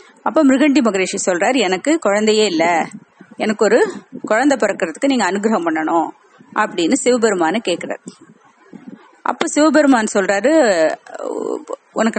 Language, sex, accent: Tamil, female, native